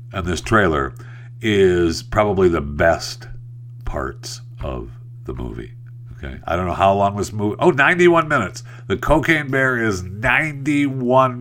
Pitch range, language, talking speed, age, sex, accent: 100-135 Hz, English, 140 wpm, 60-79, male, American